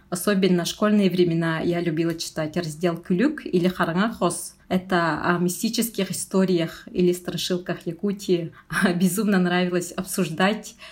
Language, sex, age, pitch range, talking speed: Russian, female, 20-39, 175-195 Hz, 120 wpm